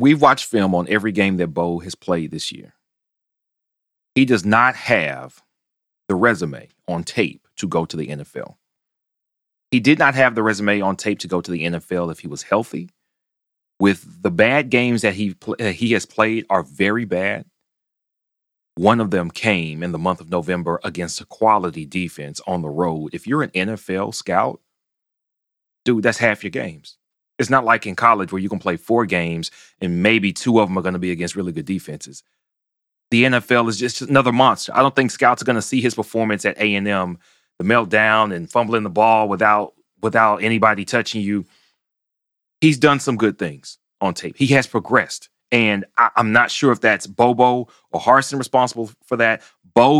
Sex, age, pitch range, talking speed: male, 30-49, 90-120 Hz, 190 wpm